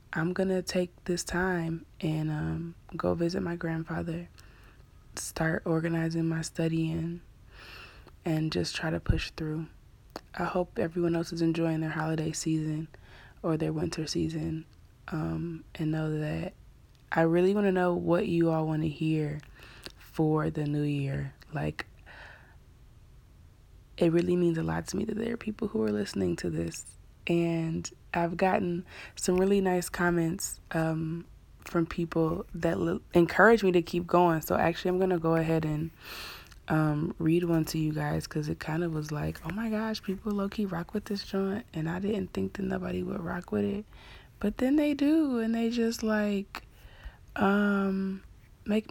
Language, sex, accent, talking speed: English, female, American, 165 wpm